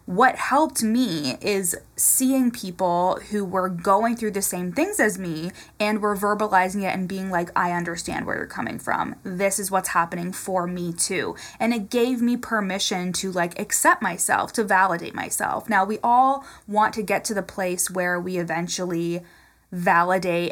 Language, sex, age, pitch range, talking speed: English, female, 20-39, 185-215 Hz, 175 wpm